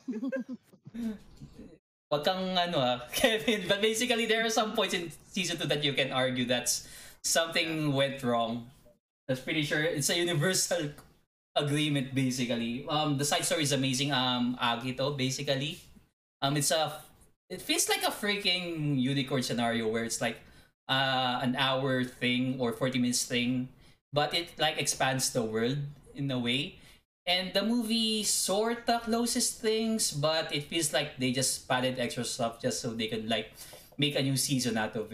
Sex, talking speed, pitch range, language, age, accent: male, 155 wpm, 125-170 Hz, Filipino, 20-39, native